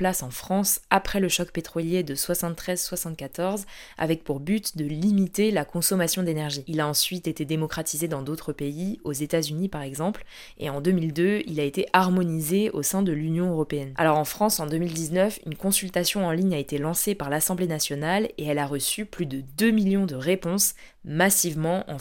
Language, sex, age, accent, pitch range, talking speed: French, female, 20-39, French, 155-190 Hz, 190 wpm